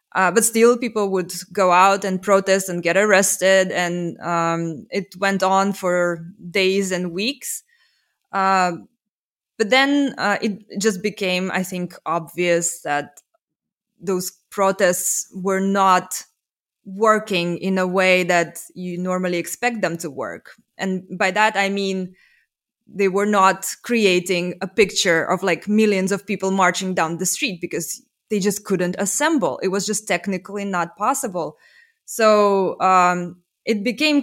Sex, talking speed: female, 145 wpm